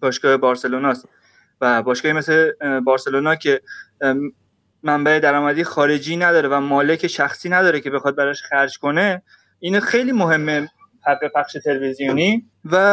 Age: 20-39